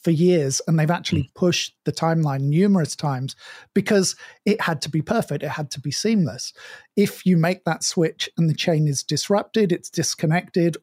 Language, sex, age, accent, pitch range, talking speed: English, male, 50-69, British, 150-180 Hz, 185 wpm